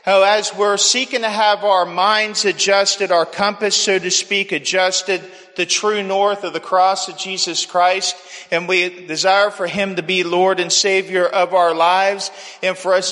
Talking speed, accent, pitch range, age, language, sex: 185 wpm, American, 180-195 Hz, 40-59, English, male